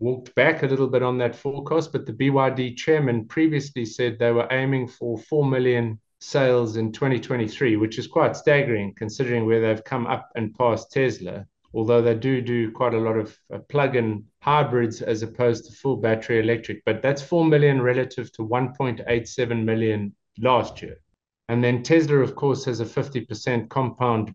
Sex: male